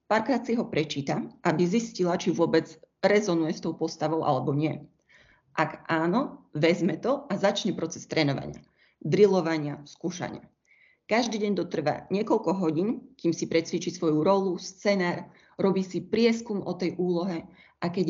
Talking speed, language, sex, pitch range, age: 145 wpm, Slovak, female, 160-195 Hz, 30-49